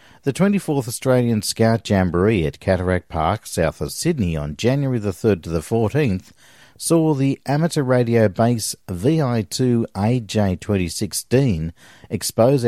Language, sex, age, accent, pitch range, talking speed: English, male, 50-69, Australian, 90-125 Hz, 115 wpm